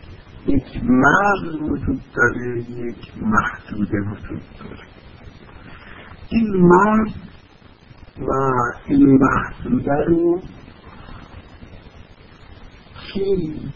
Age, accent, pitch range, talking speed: 50-69, American, 95-140 Hz, 65 wpm